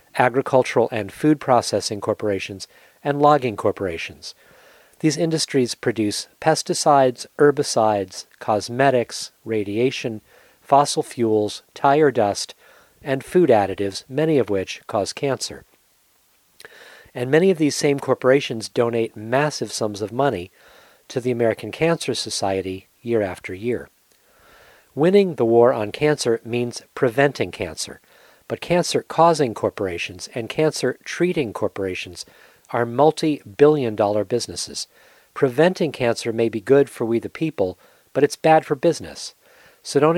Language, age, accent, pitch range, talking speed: English, 40-59, American, 110-145 Hz, 120 wpm